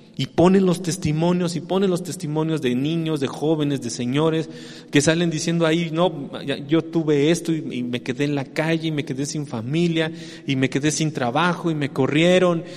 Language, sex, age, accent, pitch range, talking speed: English, male, 40-59, Mexican, 145-185 Hz, 195 wpm